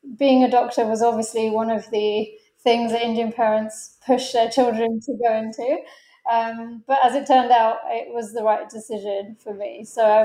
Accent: British